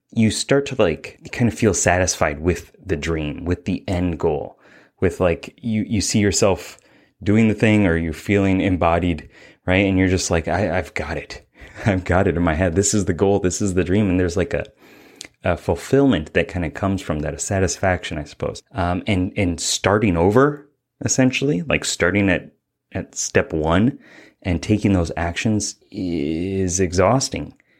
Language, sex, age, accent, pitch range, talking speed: English, male, 30-49, American, 90-105 Hz, 185 wpm